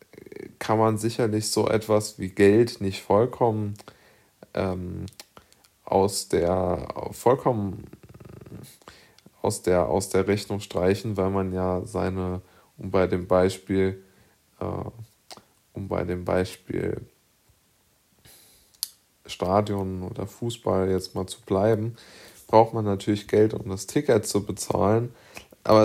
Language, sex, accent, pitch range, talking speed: German, male, German, 100-110 Hz, 115 wpm